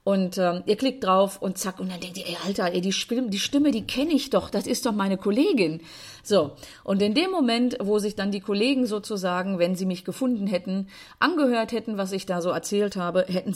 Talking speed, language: 220 wpm, German